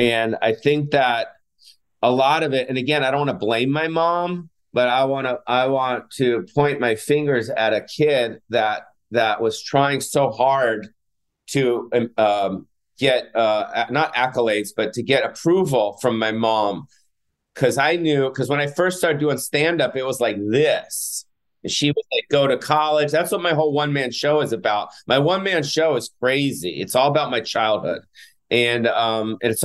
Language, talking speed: English, 190 wpm